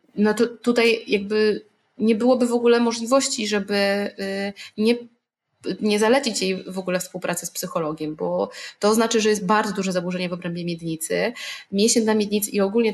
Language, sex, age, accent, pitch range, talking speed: Polish, female, 20-39, native, 185-220 Hz, 160 wpm